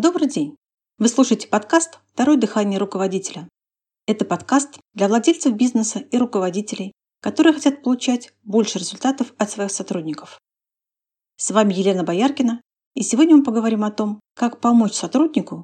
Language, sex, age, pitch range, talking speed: Russian, female, 40-59, 195-265 Hz, 140 wpm